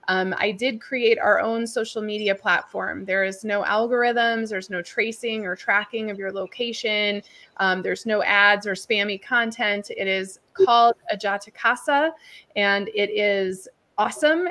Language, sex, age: English, female, 20-39